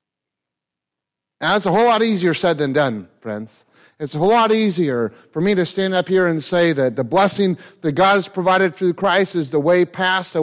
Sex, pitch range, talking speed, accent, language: male, 155-210 Hz, 215 wpm, American, English